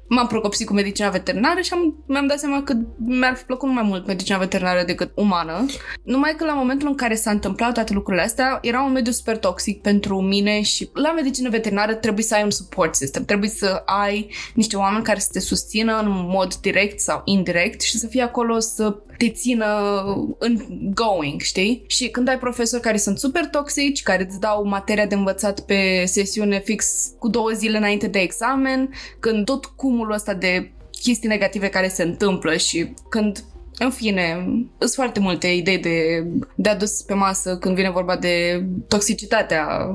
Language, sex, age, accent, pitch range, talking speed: Romanian, female, 20-39, native, 190-230 Hz, 185 wpm